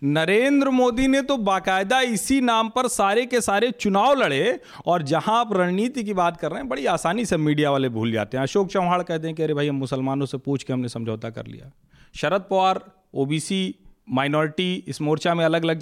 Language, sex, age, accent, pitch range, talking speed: Hindi, male, 40-59, native, 160-230 Hz, 210 wpm